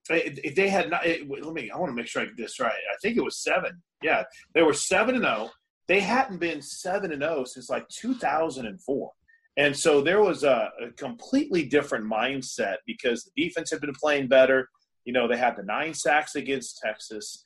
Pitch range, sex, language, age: 135-190 Hz, male, English, 30-49